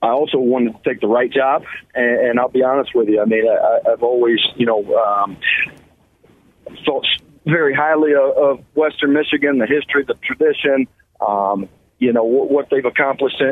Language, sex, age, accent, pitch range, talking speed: English, male, 40-59, American, 110-135 Hz, 165 wpm